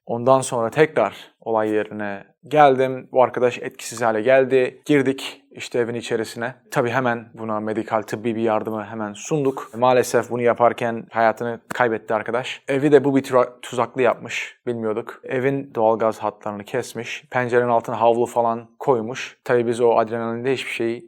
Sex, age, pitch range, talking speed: male, 30-49, 110-135 Hz, 150 wpm